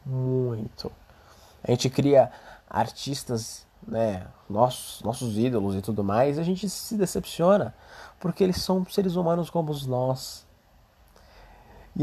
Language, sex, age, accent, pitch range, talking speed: Portuguese, male, 20-39, Brazilian, 100-135 Hz, 125 wpm